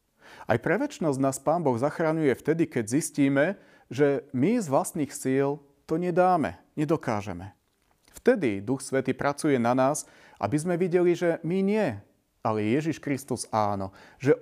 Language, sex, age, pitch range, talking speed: Slovak, male, 40-59, 115-165 Hz, 140 wpm